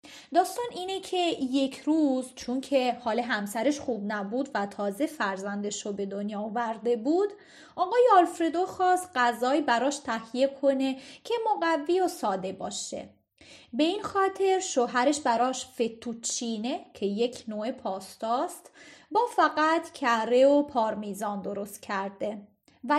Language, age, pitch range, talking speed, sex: Persian, 30-49, 225-310 Hz, 130 wpm, female